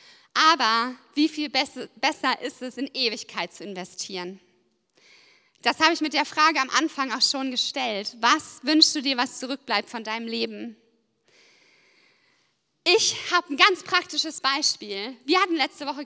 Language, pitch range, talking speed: German, 245-325 Hz, 150 wpm